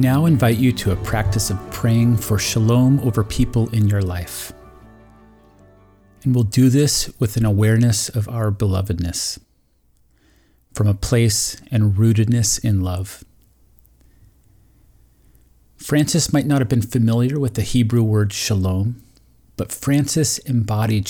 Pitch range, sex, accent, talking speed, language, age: 95-120 Hz, male, American, 135 wpm, English, 40-59